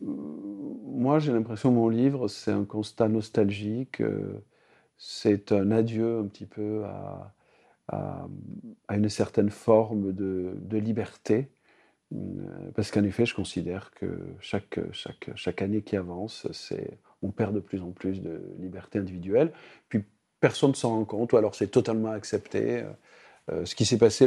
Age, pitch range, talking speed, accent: 50-69, 105-125 Hz, 155 wpm, French